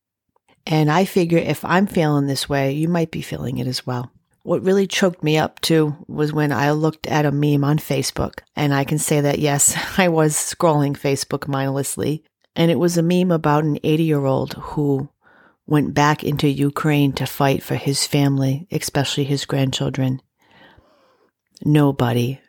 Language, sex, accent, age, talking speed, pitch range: English, female, American, 40-59, 170 wpm, 135-155 Hz